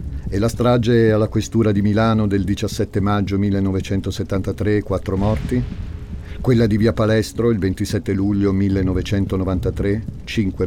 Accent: native